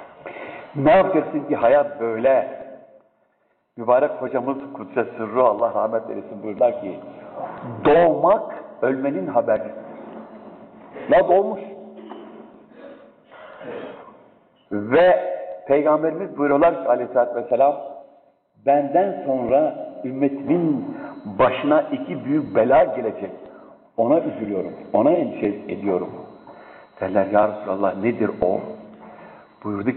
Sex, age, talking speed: male, 60-79, 85 wpm